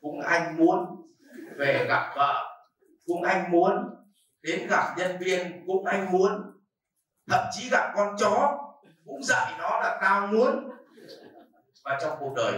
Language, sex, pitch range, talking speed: Vietnamese, male, 150-250 Hz, 150 wpm